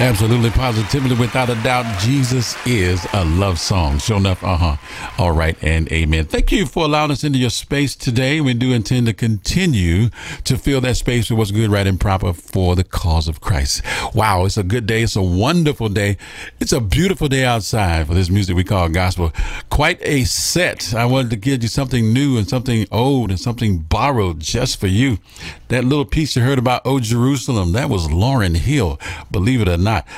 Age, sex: 50-69, male